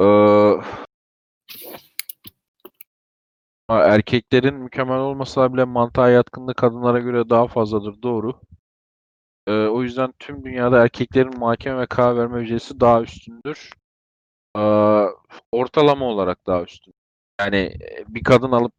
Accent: native